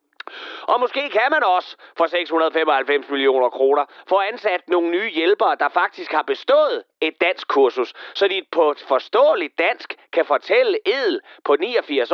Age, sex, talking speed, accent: 30-49, male, 160 wpm, native